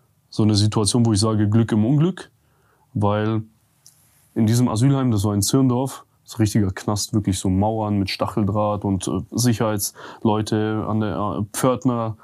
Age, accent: 20-39, German